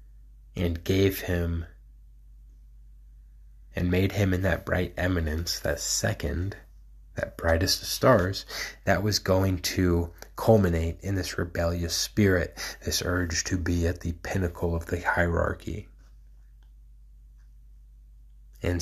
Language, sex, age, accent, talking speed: English, male, 30-49, American, 115 wpm